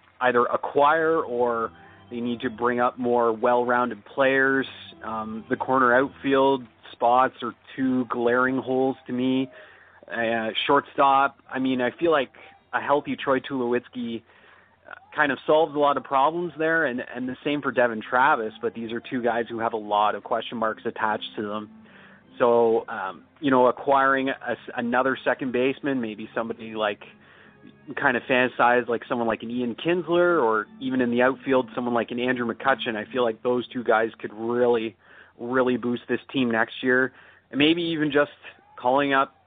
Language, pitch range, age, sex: English, 115-135 Hz, 30-49, male